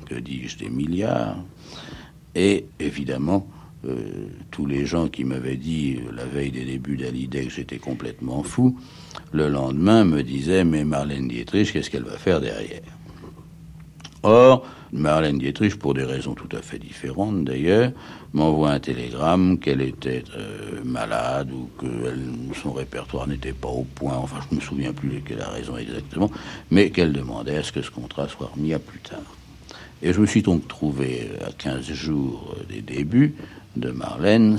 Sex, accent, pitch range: male, French, 65-90 Hz